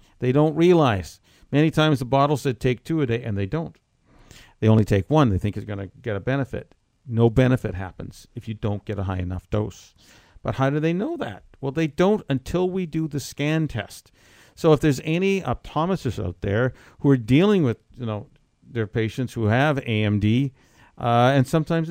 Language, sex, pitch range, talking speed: English, male, 110-140 Hz, 205 wpm